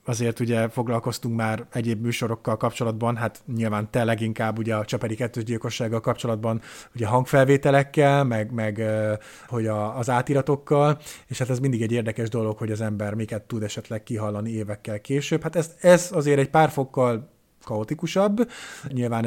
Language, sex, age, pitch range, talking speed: Hungarian, male, 30-49, 110-135 Hz, 160 wpm